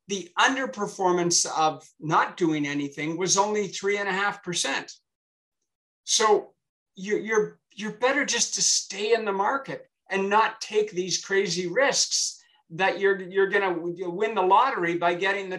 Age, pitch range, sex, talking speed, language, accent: 50-69, 160-195 Hz, male, 150 wpm, English, American